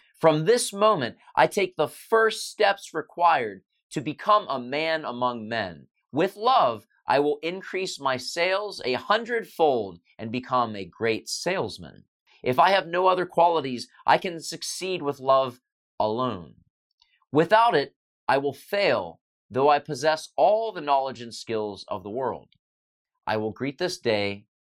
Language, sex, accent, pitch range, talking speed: English, male, American, 120-195 Hz, 150 wpm